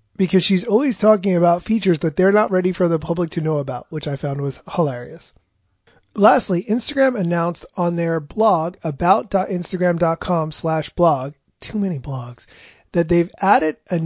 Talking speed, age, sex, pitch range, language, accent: 160 wpm, 30-49, male, 155-200 Hz, English, American